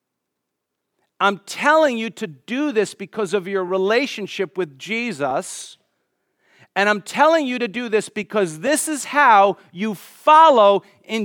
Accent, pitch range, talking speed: American, 195-255 Hz, 140 wpm